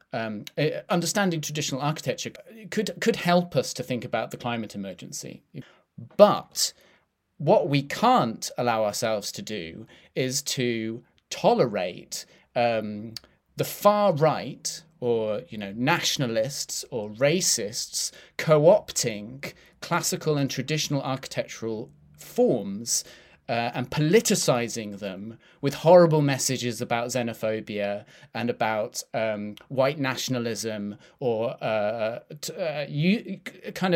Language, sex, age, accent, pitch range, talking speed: English, male, 30-49, British, 120-170 Hz, 110 wpm